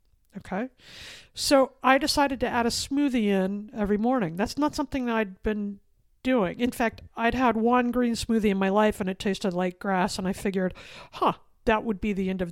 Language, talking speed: English, 205 wpm